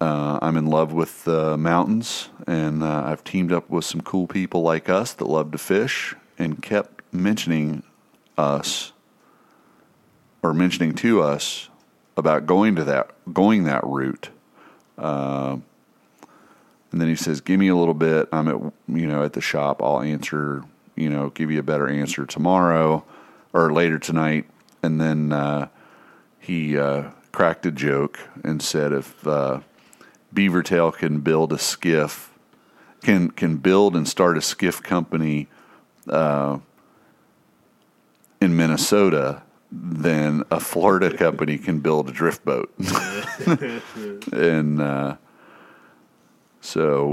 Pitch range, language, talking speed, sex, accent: 75-85 Hz, English, 135 wpm, male, American